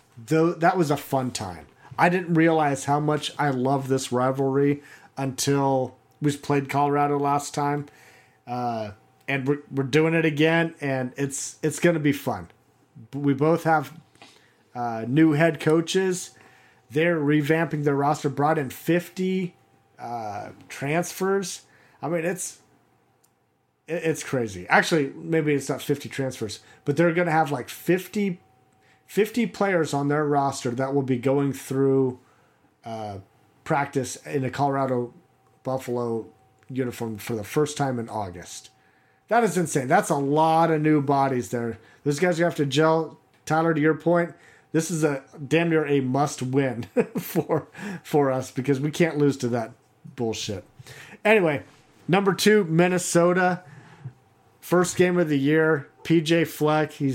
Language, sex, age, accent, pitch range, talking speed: English, male, 40-59, American, 130-160 Hz, 150 wpm